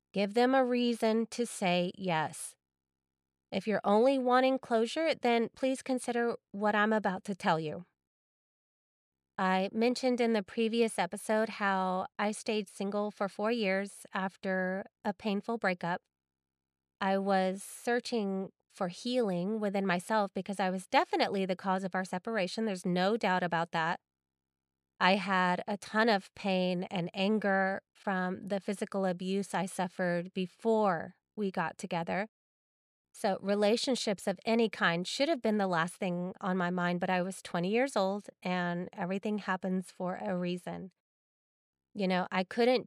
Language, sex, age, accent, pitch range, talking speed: English, female, 30-49, American, 180-220 Hz, 150 wpm